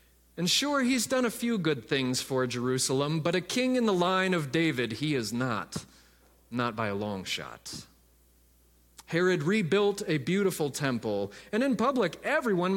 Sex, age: male, 30-49